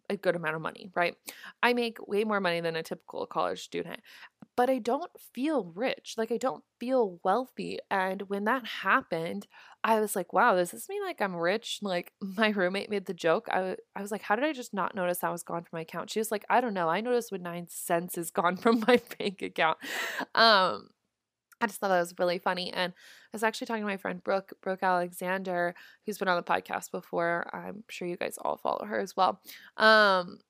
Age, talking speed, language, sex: 20-39, 225 wpm, English, female